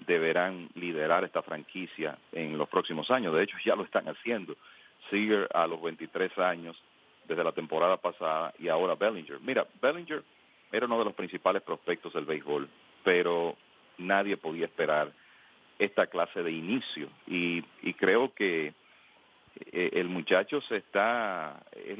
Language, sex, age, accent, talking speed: English, male, 40-59, Venezuelan, 145 wpm